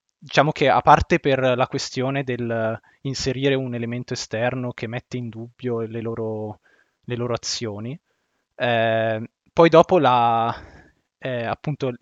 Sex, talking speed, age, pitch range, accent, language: male, 135 wpm, 20-39, 120-140 Hz, native, Italian